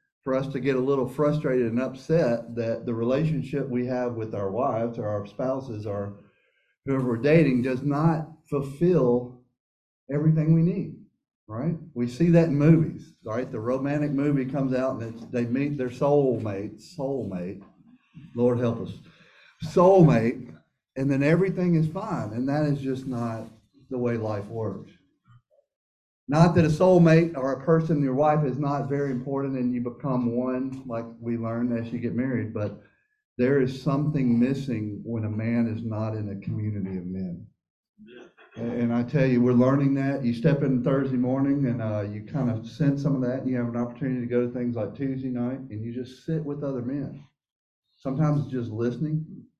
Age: 50-69